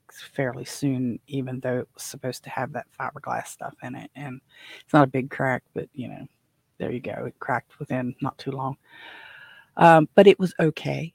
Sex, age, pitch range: female, 40-59, 130-145 Hz